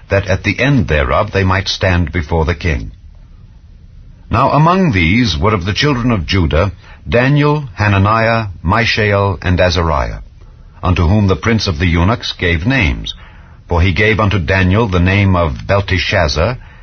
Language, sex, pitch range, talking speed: English, male, 85-110 Hz, 155 wpm